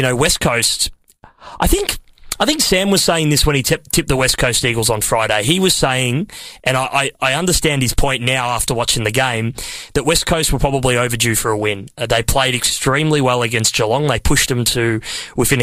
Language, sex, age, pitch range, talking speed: English, male, 20-39, 115-145 Hz, 210 wpm